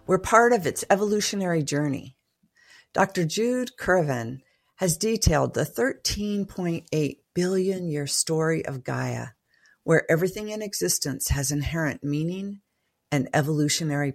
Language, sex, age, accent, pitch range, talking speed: English, female, 50-69, American, 145-195 Hz, 115 wpm